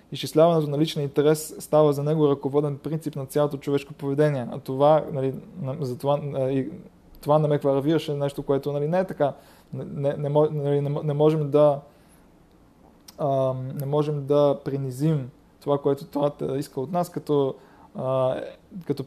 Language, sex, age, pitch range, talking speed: Bulgarian, male, 20-39, 135-155 Hz, 150 wpm